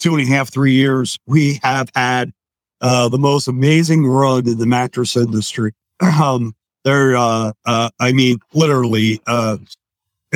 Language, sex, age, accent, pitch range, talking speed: English, male, 50-69, American, 115-135 Hz, 150 wpm